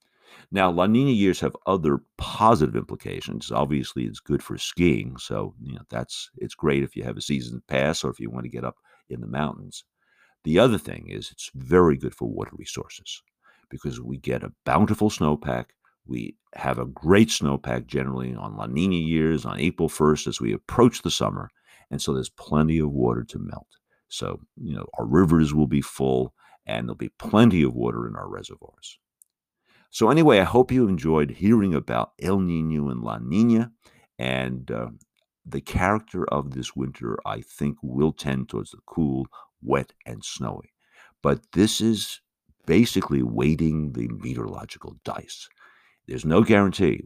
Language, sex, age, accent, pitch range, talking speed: English, male, 50-69, American, 65-95 Hz, 170 wpm